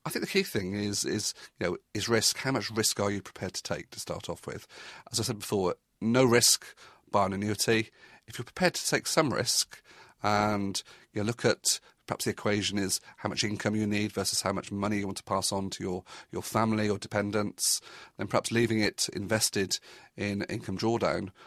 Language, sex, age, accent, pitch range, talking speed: English, male, 40-59, British, 100-115 Hz, 210 wpm